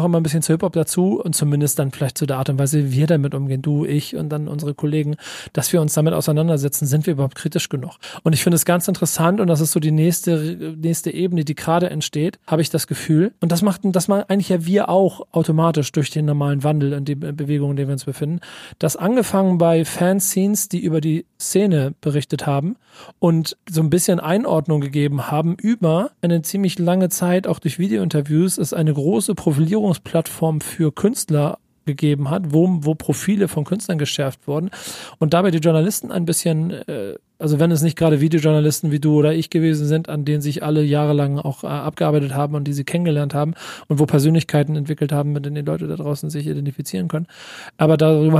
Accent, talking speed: German, 210 wpm